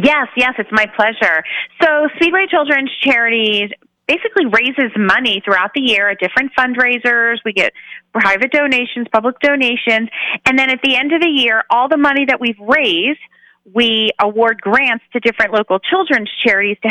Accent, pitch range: American, 195-260 Hz